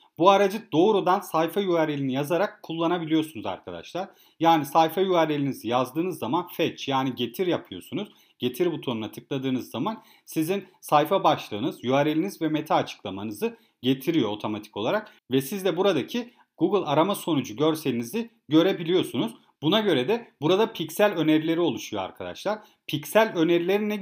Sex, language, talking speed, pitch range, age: male, Turkish, 125 wpm, 135-190 Hz, 40-59